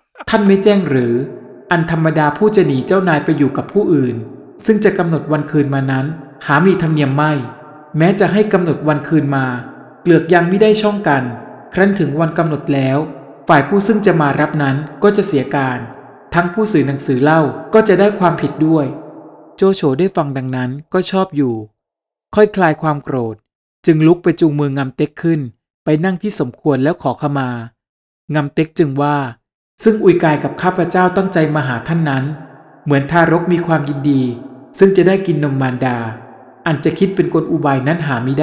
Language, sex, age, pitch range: Thai, male, 20-39, 140-175 Hz